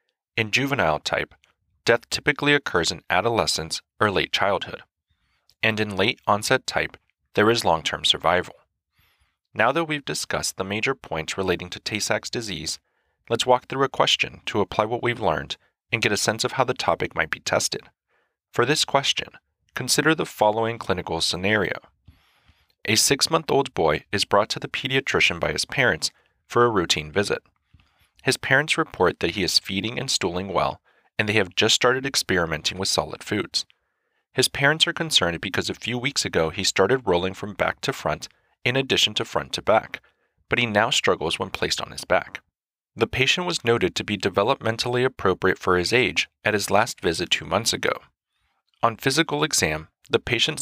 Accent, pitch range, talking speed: American, 95-135 Hz, 175 wpm